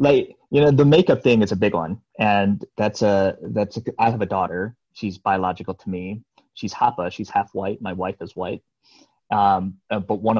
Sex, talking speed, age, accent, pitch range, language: male, 210 wpm, 20-39, American, 95-105 Hz, English